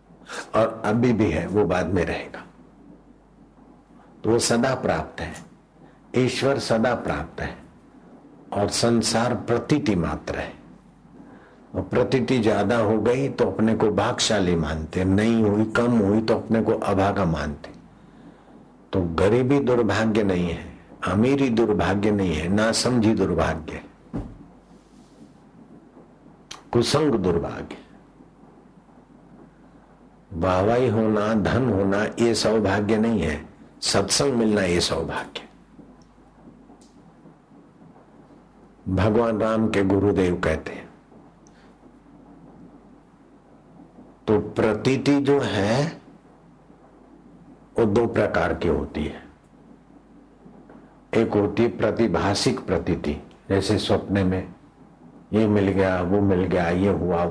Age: 60-79